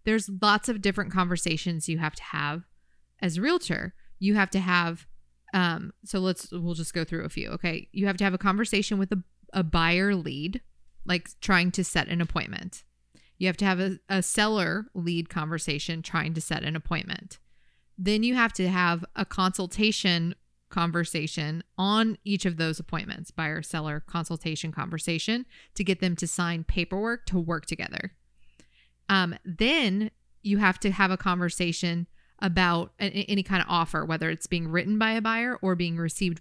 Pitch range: 165-200 Hz